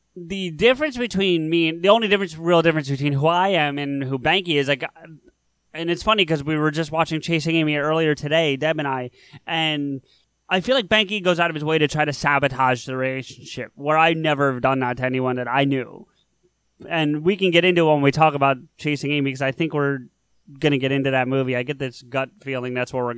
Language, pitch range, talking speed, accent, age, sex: English, 140-180 Hz, 235 wpm, American, 20-39, male